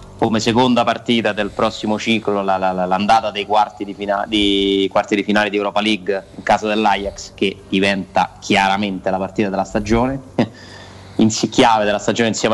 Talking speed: 160 wpm